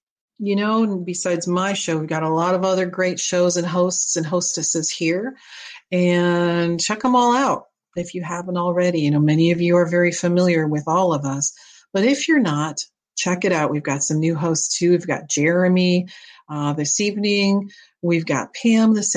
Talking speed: 195 wpm